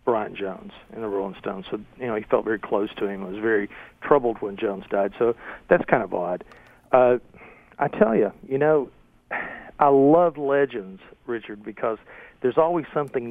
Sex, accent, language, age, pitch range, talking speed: male, American, English, 50-69, 105-135 Hz, 180 wpm